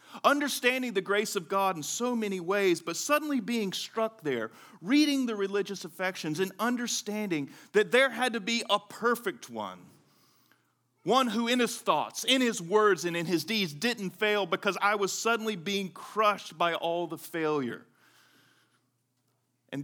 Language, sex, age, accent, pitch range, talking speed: English, male, 40-59, American, 125-195 Hz, 160 wpm